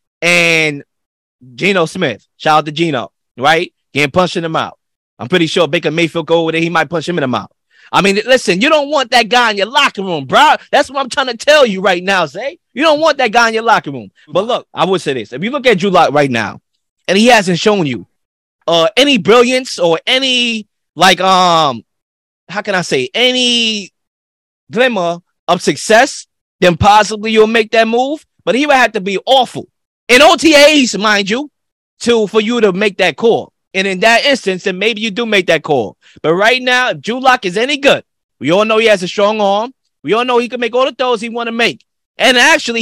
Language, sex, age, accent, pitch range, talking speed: English, male, 20-39, American, 180-245 Hz, 225 wpm